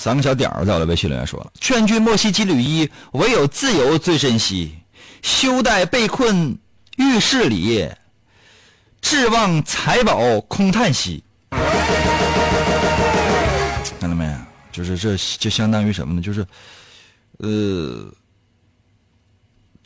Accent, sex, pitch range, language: native, male, 95-125 Hz, Chinese